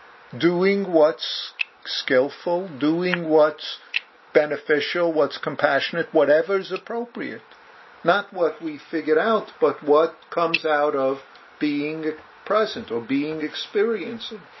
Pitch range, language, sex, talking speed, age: 150-255 Hz, English, male, 105 wpm, 50-69